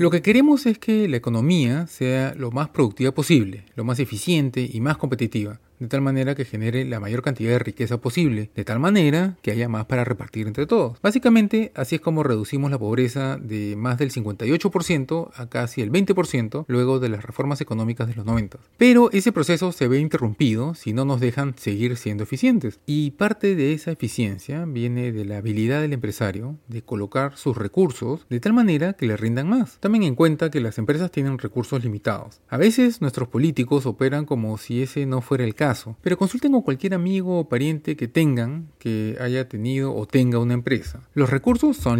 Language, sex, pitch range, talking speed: Spanish, male, 115-160 Hz, 195 wpm